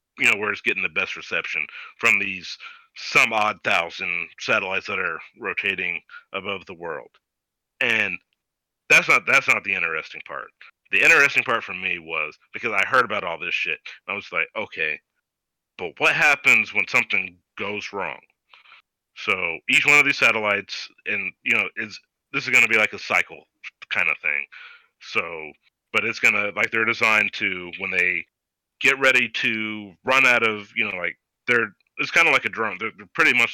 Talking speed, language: 185 wpm, English